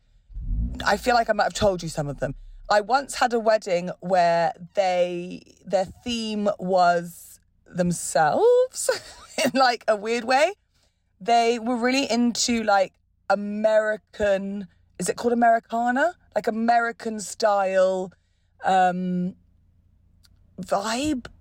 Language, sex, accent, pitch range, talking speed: English, female, British, 170-225 Hz, 120 wpm